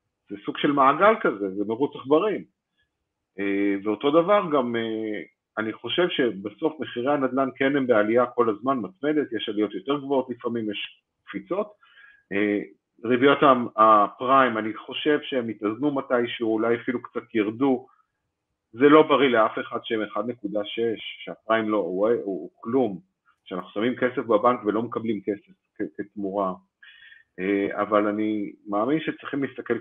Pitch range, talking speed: 110-145 Hz, 135 wpm